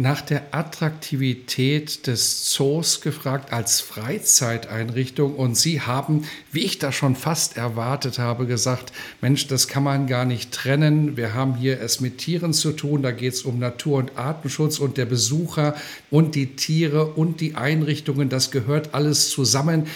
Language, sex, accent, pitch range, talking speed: German, male, German, 125-155 Hz, 160 wpm